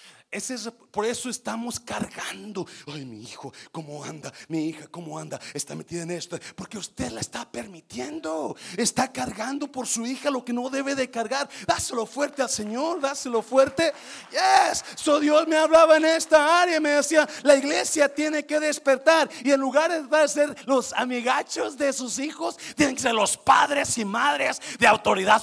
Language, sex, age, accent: Spanish, male, 40-59, Mexican